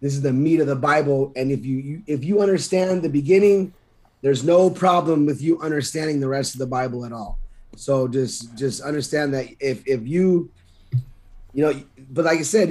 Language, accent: English, American